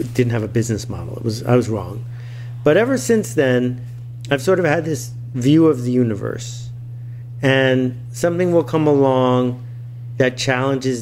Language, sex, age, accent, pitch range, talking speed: English, male, 50-69, American, 120-130 Hz, 165 wpm